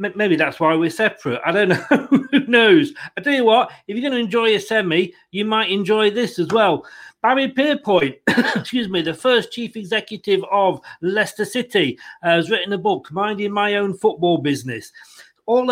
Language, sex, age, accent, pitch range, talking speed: English, male, 40-59, British, 175-225 Hz, 185 wpm